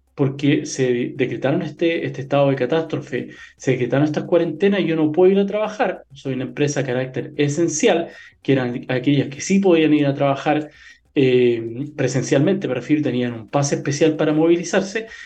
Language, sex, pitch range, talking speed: Spanish, male, 135-165 Hz, 175 wpm